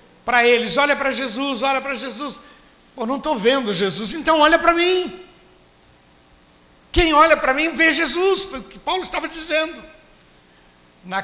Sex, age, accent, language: male, 60-79, Brazilian, Portuguese